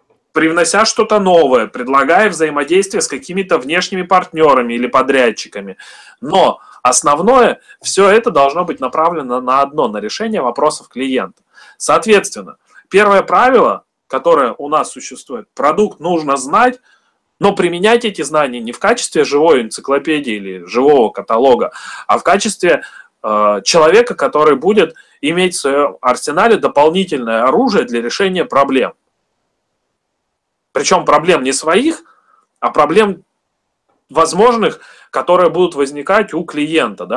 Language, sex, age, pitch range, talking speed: Russian, male, 30-49, 130-210 Hz, 120 wpm